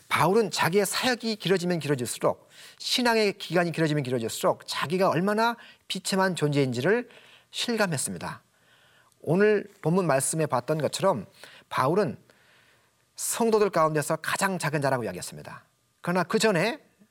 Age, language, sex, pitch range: 40-59, Korean, male, 150-200 Hz